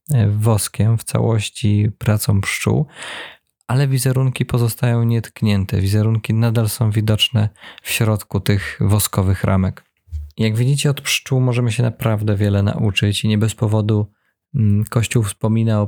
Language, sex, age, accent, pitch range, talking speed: Polish, male, 20-39, native, 100-115 Hz, 130 wpm